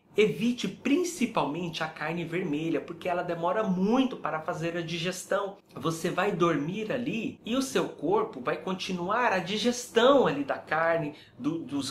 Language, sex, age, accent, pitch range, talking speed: Portuguese, male, 30-49, Brazilian, 150-200 Hz, 140 wpm